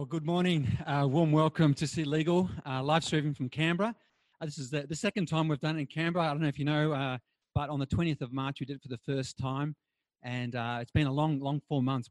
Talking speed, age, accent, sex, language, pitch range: 270 wpm, 30-49, Australian, male, English, 125-155 Hz